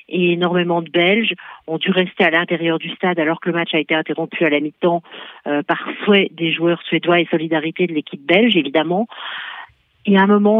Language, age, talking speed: French, 50-69, 205 wpm